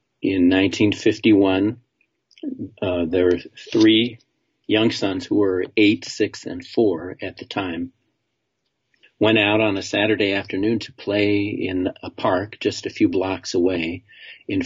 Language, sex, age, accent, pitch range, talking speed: English, male, 50-69, American, 100-120 Hz, 140 wpm